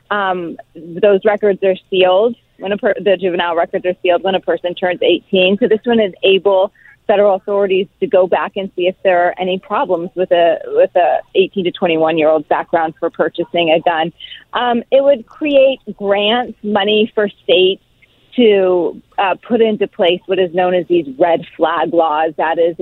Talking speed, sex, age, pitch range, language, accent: 190 wpm, female, 30-49, 175-205 Hz, English, American